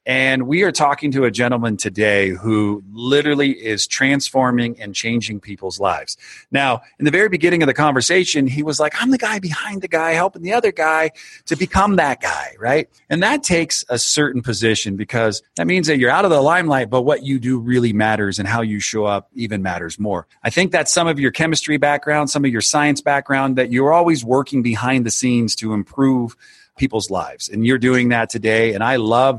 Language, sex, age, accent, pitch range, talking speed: English, male, 40-59, American, 110-140 Hz, 210 wpm